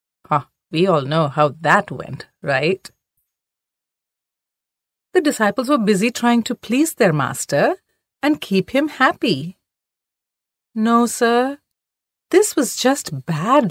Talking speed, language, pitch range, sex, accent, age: 115 wpm, English, 155-240 Hz, female, Indian, 30-49